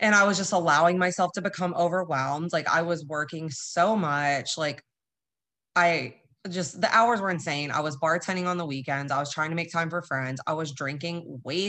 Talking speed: 205 wpm